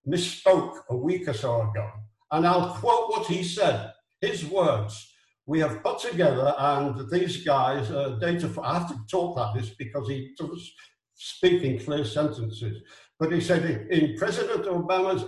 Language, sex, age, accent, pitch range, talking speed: English, male, 60-79, British, 130-180 Hz, 165 wpm